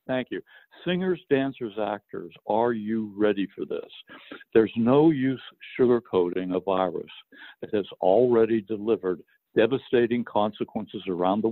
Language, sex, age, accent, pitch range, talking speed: English, male, 60-79, American, 100-125 Hz, 125 wpm